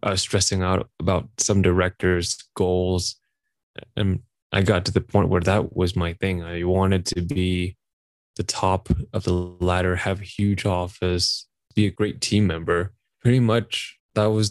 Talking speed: 160 wpm